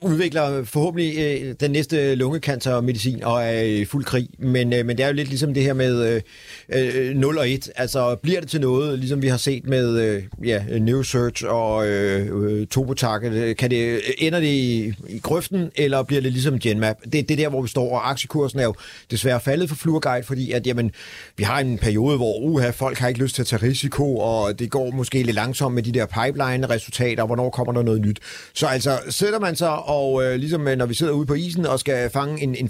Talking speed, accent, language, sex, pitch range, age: 220 wpm, native, Danish, male, 120-145 Hz, 40-59